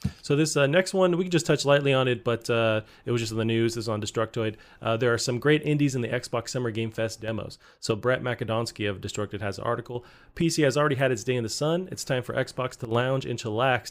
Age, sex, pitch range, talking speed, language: 30-49, male, 110-130 Hz, 265 wpm, English